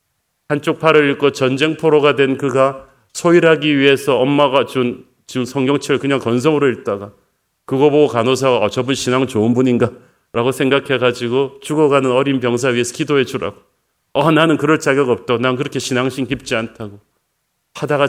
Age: 40-59